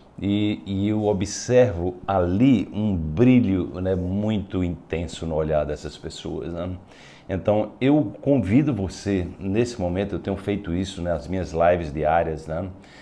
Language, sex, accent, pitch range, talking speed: Portuguese, male, Brazilian, 85-105 Hz, 145 wpm